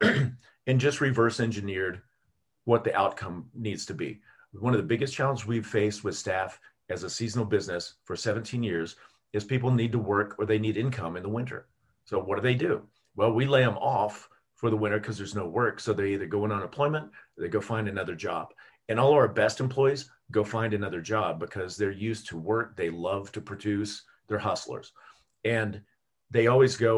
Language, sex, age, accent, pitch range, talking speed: English, male, 40-59, American, 105-125 Hz, 200 wpm